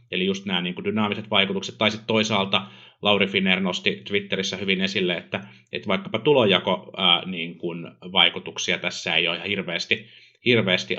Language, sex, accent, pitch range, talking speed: Finnish, male, native, 90-110 Hz, 160 wpm